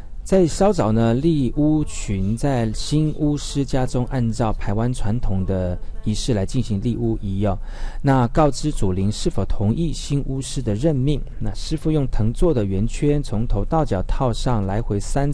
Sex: male